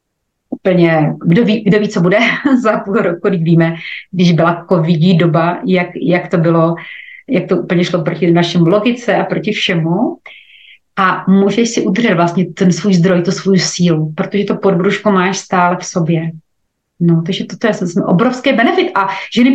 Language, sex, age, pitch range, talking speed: Slovak, female, 30-49, 175-220 Hz, 180 wpm